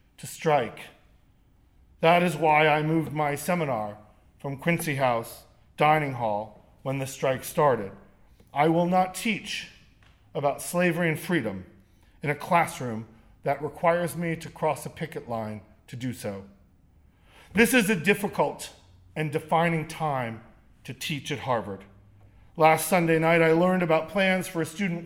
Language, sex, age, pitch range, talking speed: English, male, 40-59, 130-175 Hz, 145 wpm